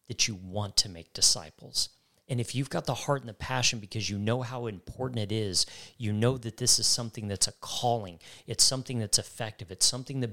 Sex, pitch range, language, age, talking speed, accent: male, 100-125 Hz, English, 40-59, 220 wpm, American